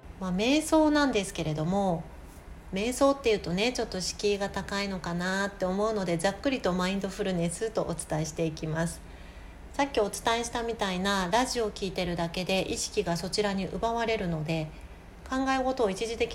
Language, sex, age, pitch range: Japanese, female, 40-59, 170-225 Hz